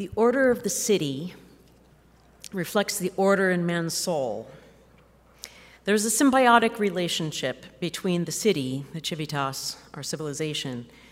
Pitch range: 150-190 Hz